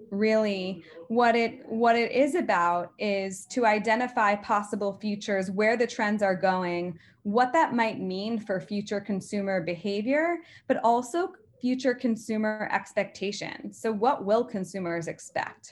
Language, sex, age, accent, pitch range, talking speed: English, female, 20-39, American, 180-220 Hz, 135 wpm